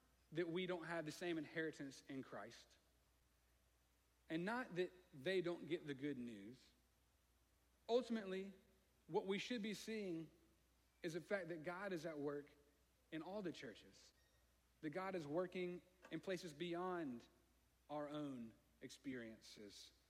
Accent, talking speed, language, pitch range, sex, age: American, 135 wpm, English, 125-185 Hz, male, 40-59